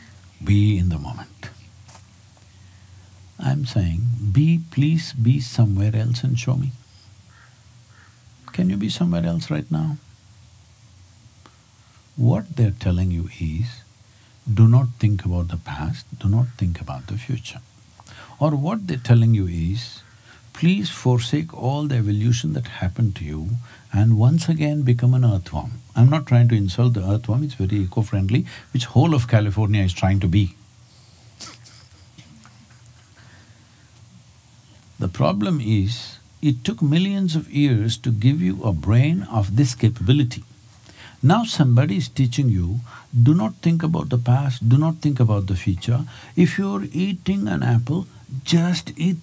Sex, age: male, 60-79